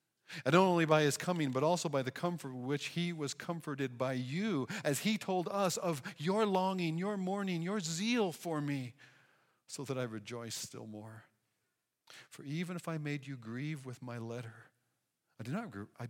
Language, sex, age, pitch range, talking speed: English, male, 50-69, 125-170 Hz, 175 wpm